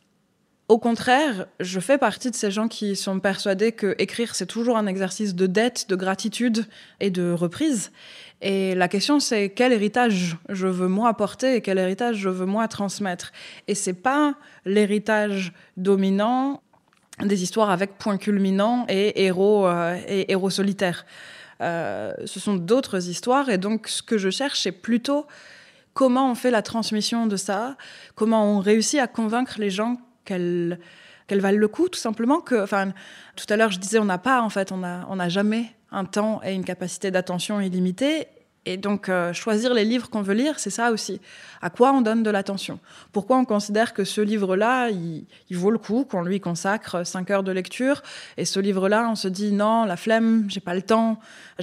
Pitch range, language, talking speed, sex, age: 190-225 Hz, French, 190 wpm, female, 20-39